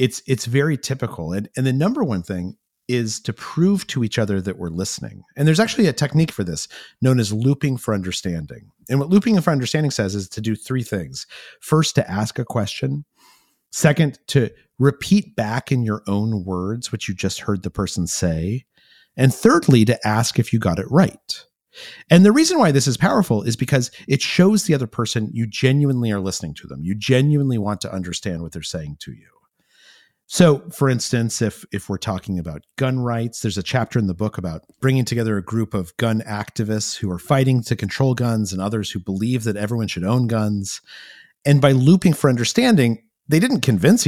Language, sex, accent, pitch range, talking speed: English, male, American, 100-140 Hz, 200 wpm